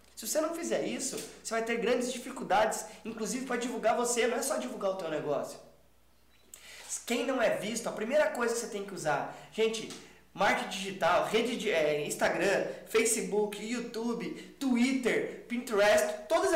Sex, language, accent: male, Portuguese, Brazilian